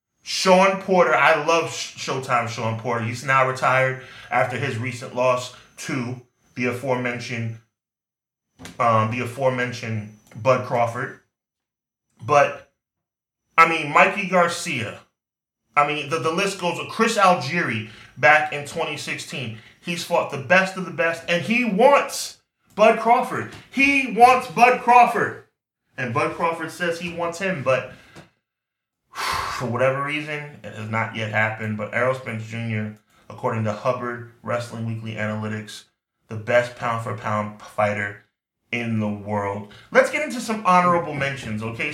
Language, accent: English, American